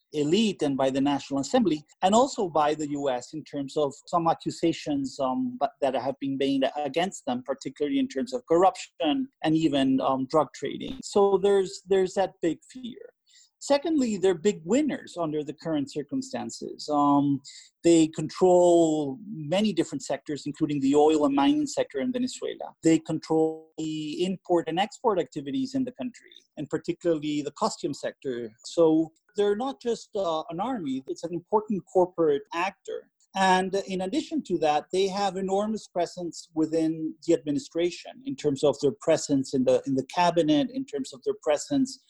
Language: English